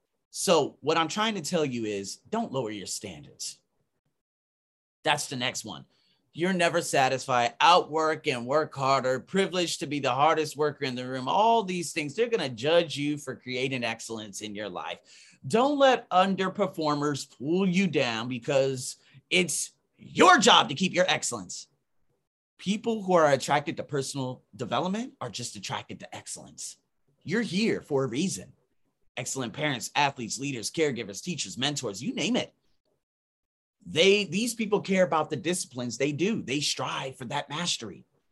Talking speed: 155 wpm